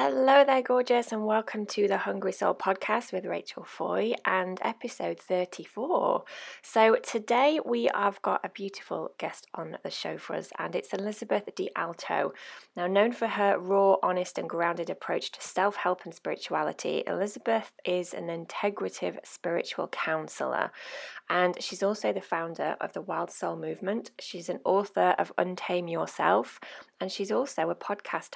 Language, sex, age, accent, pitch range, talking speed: English, female, 20-39, British, 170-205 Hz, 155 wpm